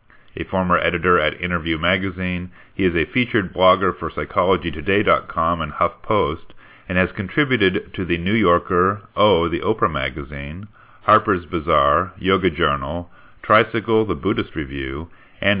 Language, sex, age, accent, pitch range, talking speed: English, male, 40-59, American, 85-105 Hz, 135 wpm